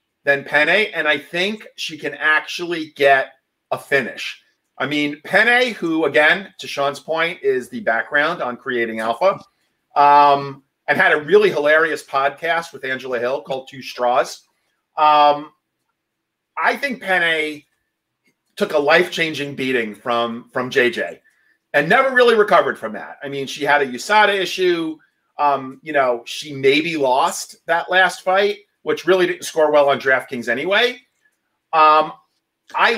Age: 40-59